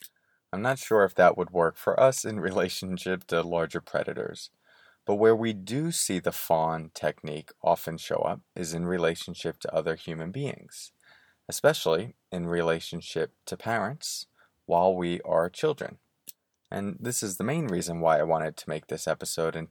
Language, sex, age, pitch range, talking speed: English, male, 30-49, 80-95 Hz, 165 wpm